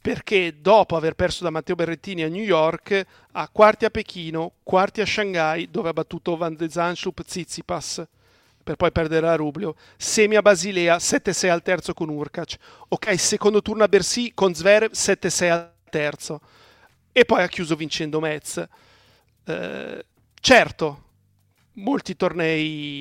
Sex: male